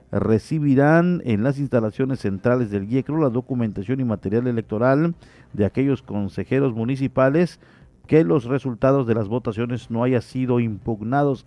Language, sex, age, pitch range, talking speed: Spanish, male, 50-69, 110-140 Hz, 135 wpm